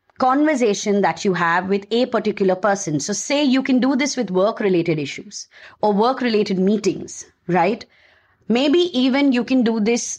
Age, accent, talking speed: 30-49, Indian, 170 wpm